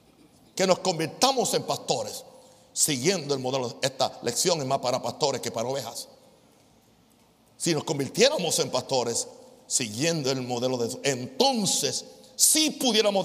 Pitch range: 135-175 Hz